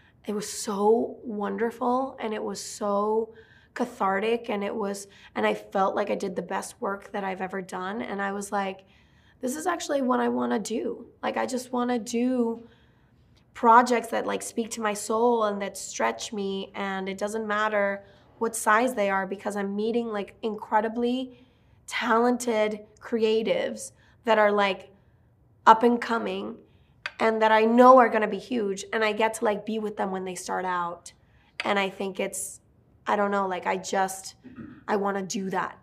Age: 20-39